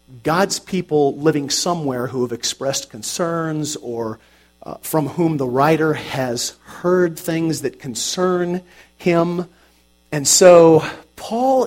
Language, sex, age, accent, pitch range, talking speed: English, male, 40-59, American, 120-180 Hz, 120 wpm